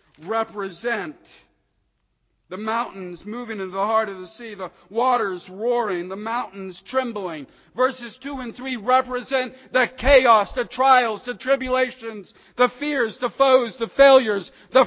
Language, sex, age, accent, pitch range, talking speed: English, male, 50-69, American, 140-225 Hz, 135 wpm